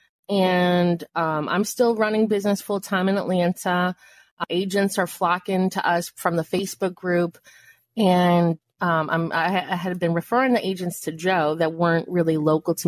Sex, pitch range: female, 155-185 Hz